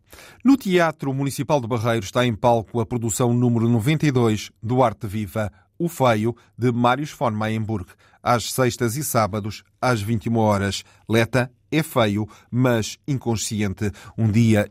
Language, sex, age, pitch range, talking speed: Portuguese, male, 40-59, 110-130 Hz, 145 wpm